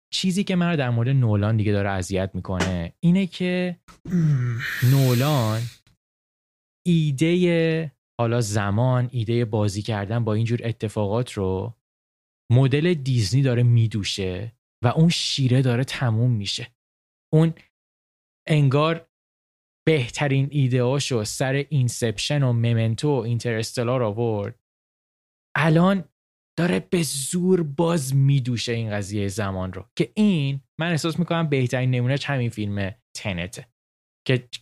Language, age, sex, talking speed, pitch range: Persian, 20-39, male, 115 wpm, 110-145 Hz